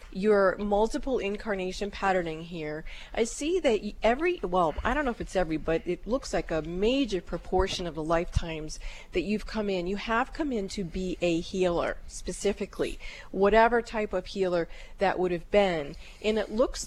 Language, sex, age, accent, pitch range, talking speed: English, female, 40-59, American, 185-220 Hz, 180 wpm